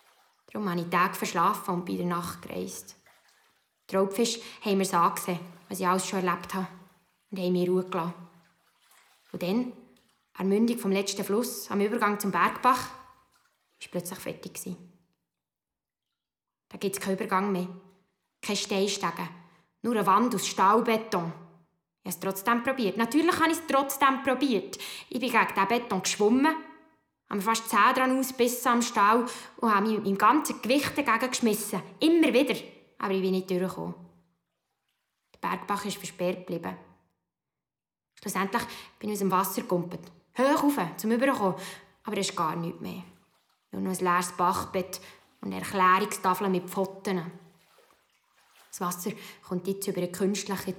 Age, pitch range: 20-39, 180-225 Hz